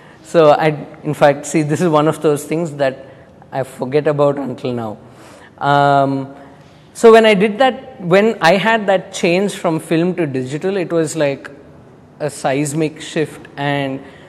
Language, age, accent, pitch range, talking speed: English, 20-39, Indian, 140-170 Hz, 165 wpm